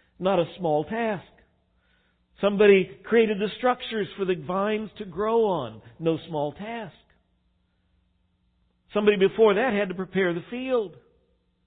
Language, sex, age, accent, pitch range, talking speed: English, male, 50-69, American, 155-215 Hz, 130 wpm